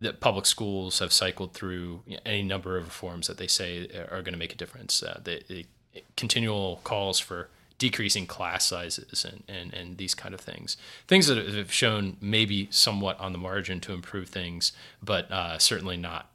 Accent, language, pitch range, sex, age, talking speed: American, English, 90-100 Hz, male, 30-49, 185 wpm